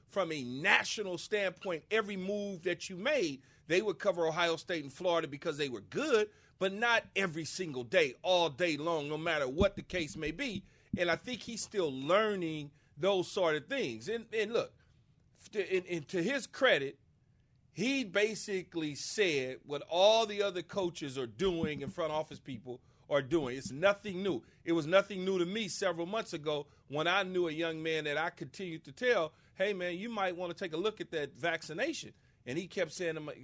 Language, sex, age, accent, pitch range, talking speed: English, male, 40-59, American, 155-205 Hz, 195 wpm